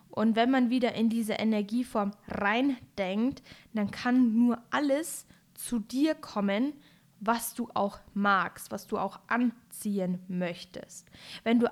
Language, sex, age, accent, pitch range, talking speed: German, female, 10-29, German, 205-245 Hz, 135 wpm